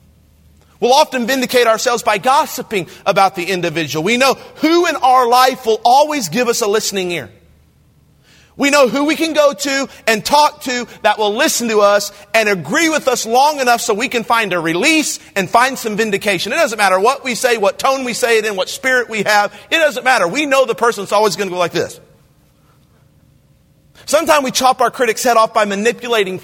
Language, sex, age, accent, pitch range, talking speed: English, male, 40-59, American, 190-260 Hz, 205 wpm